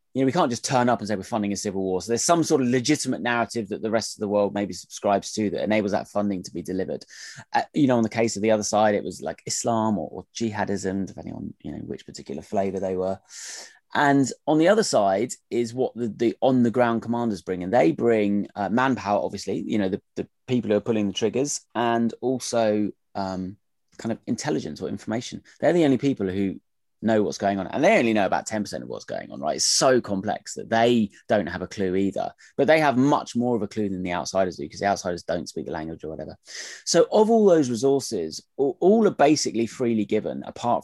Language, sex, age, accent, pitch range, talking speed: English, male, 20-39, British, 100-125 Hz, 240 wpm